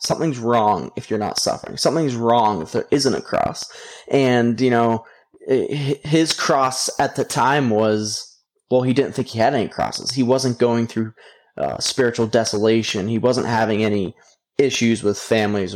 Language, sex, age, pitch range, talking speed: English, male, 20-39, 110-130 Hz, 170 wpm